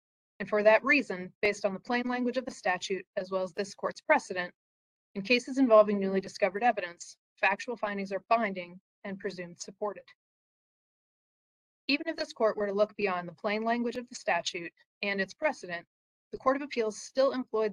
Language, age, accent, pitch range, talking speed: English, 30-49, American, 190-230 Hz, 185 wpm